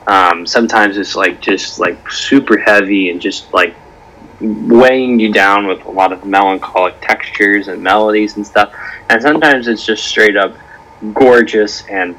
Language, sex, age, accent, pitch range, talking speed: English, male, 20-39, American, 95-115 Hz, 160 wpm